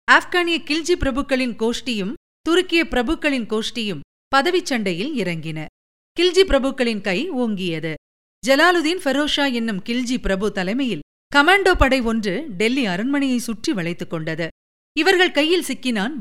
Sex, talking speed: female, 110 wpm